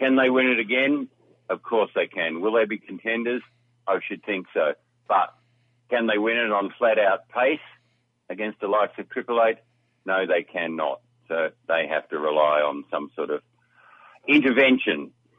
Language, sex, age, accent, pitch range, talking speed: English, male, 50-69, Australian, 95-120 Hz, 170 wpm